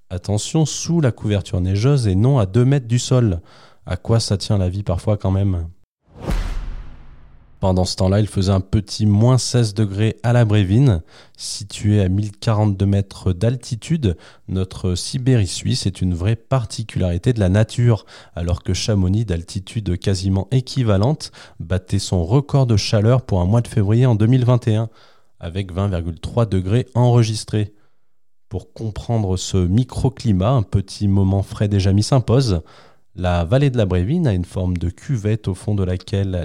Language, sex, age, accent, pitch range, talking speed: French, male, 20-39, French, 95-120 Hz, 160 wpm